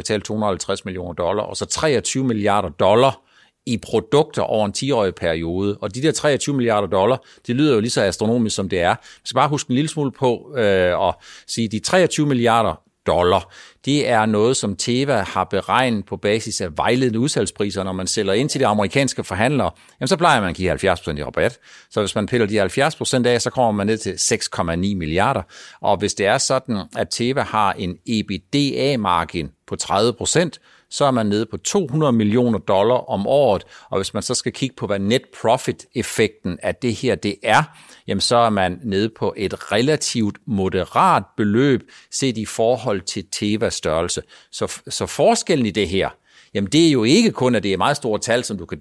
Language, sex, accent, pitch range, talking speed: Danish, male, native, 100-130 Hz, 195 wpm